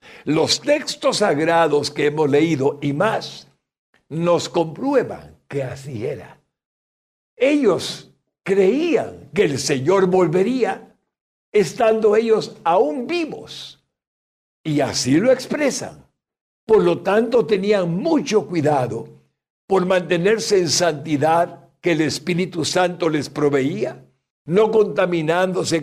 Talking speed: 105 wpm